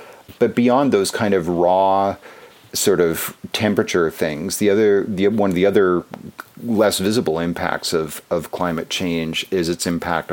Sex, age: male, 40-59